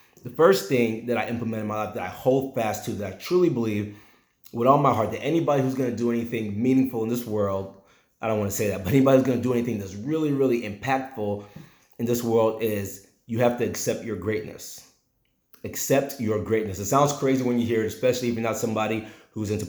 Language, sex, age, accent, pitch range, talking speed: English, male, 30-49, American, 105-125 Hz, 235 wpm